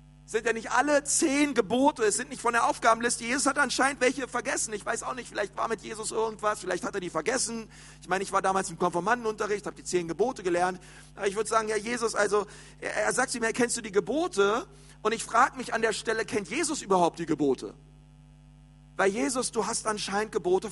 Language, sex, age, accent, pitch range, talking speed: German, male, 40-59, German, 165-230 Hz, 220 wpm